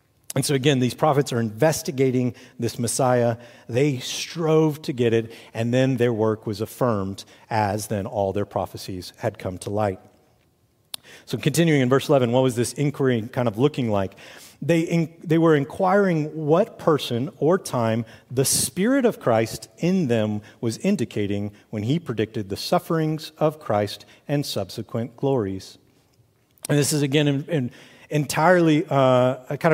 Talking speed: 155 wpm